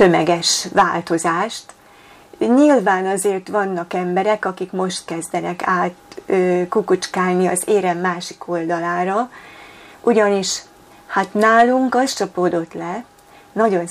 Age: 30-49